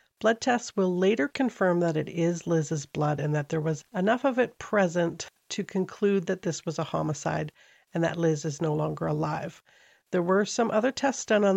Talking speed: 200 wpm